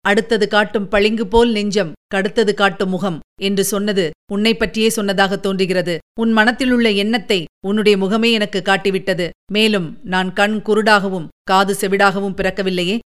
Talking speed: 125 wpm